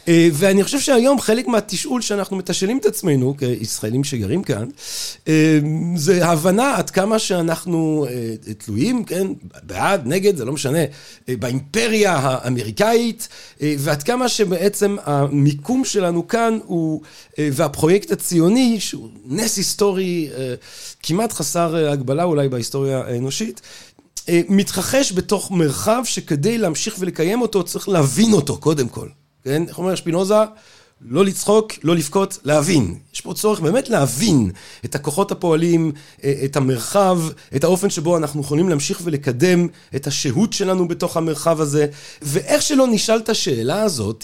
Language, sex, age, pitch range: Hebrew, male, 40-59, 140-200 Hz